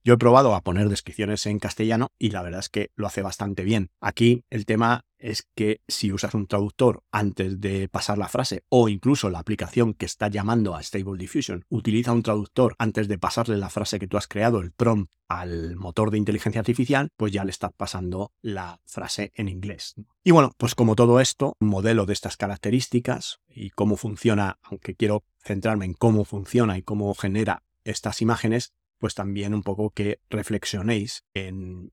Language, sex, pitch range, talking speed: Spanish, male, 100-115 Hz, 190 wpm